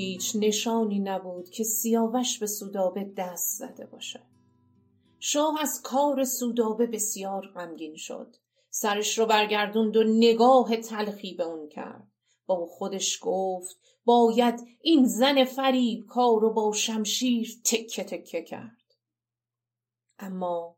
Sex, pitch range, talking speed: female, 190-245 Hz, 120 wpm